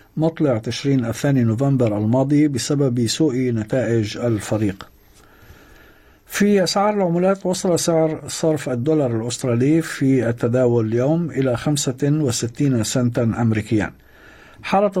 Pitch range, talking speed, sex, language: 120-160 Hz, 100 wpm, male, Arabic